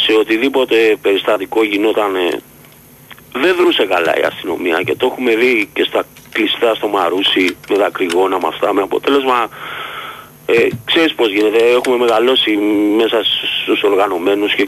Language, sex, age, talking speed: Greek, male, 40-59, 140 wpm